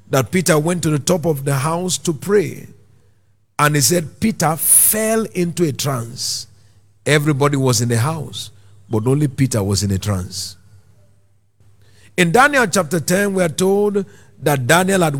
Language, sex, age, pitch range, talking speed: English, male, 50-69, 115-190 Hz, 160 wpm